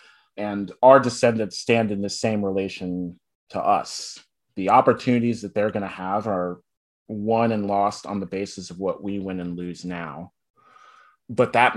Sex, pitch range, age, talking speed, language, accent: male, 95-125 Hz, 30-49, 170 wpm, English, American